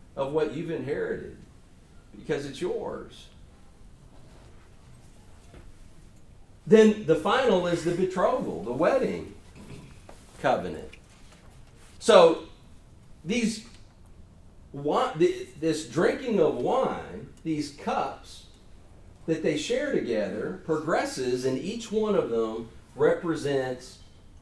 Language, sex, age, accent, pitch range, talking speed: English, male, 40-59, American, 140-215 Hz, 85 wpm